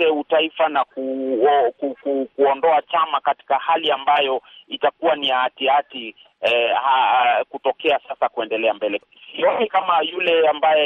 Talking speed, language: 120 wpm, Swahili